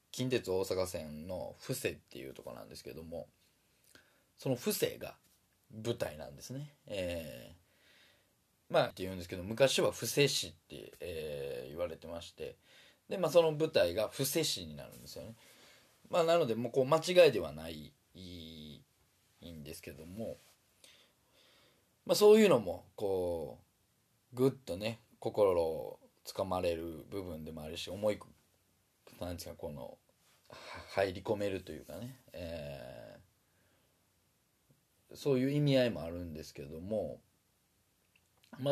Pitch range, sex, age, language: 85-140 Hz, male, 20-39, Japanese